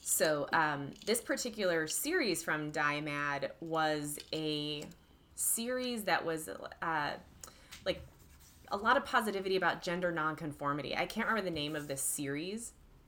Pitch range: 150-185 Hz